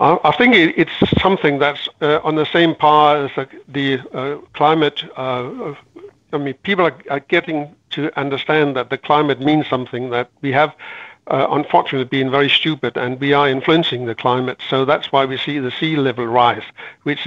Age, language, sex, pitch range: 60-79, English, male, 130-150 Hz